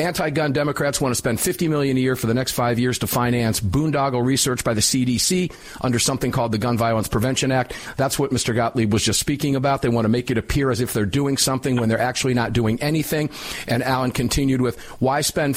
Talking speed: 230 wpm